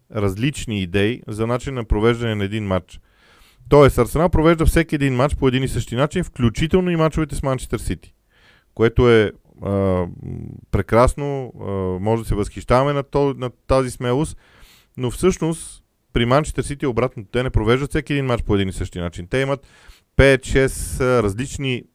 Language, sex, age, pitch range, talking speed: Bulgarian, male, 40-59, 105-135 Hz, 165 wpm